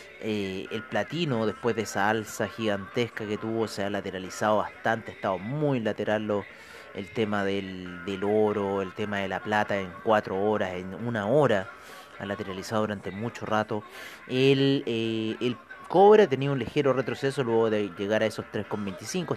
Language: Spanish